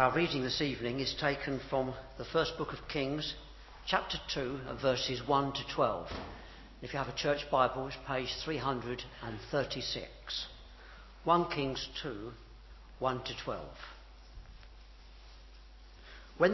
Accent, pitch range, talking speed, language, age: British, 120-155 Hz, 125 wpm, English, 60-79